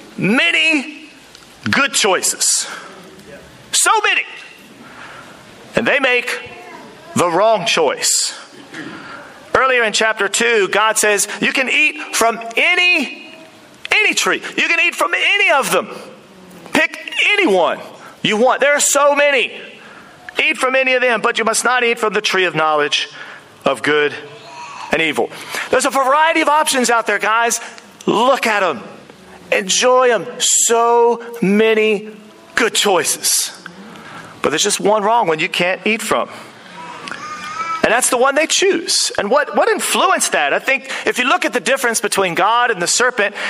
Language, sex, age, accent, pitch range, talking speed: English, male, 40-59, American, 205-290 Hz, 150 wpm